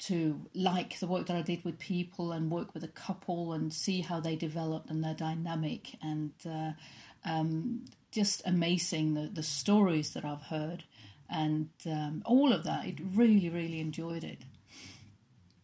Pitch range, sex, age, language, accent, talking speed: 160-185 Hz, female, 40-59, English, British, 165 wpm